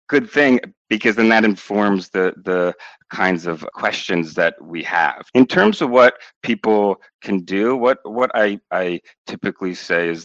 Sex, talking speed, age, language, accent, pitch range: male, 165 wpm, 40-59, English, American, 90-110 Hz